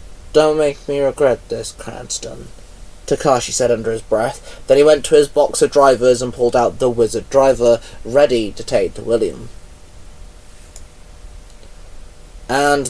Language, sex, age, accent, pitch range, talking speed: English, male, 20-39, British, 110-145 Hz, 145 wpm